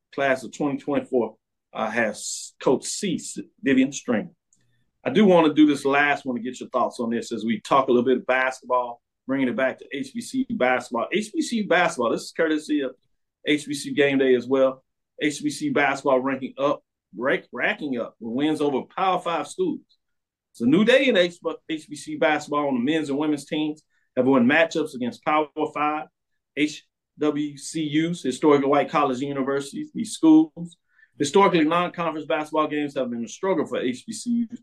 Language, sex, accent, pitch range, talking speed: English, male, American, 135-175 Hz, 175 wpm